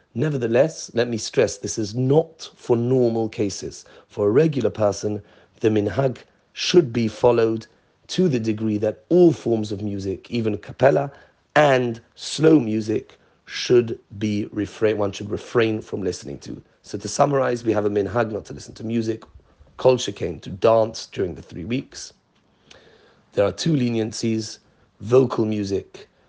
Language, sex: English, male